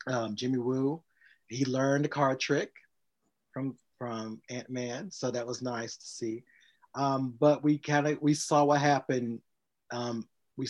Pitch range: 110-135 Hz